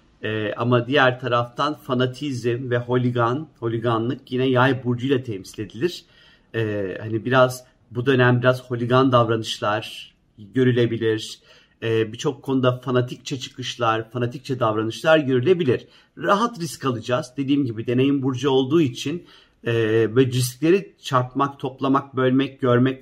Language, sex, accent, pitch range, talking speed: Turkish, male, native, 120-145 Hz, 115 wpm